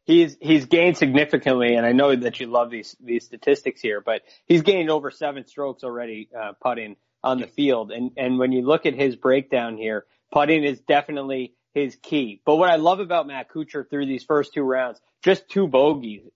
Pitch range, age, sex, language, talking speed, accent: 130-170 Hz, 20-39, male, English, 200 wpm, American